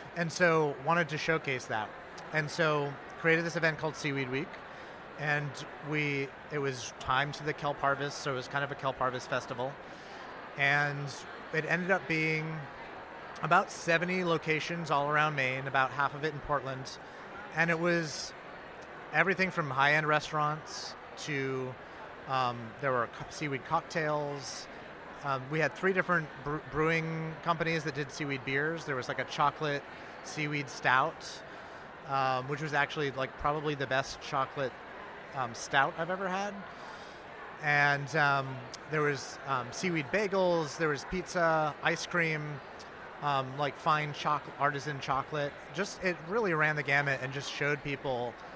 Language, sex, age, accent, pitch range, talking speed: English, male, 30-49, American, 135-160 Hz, 150 wpm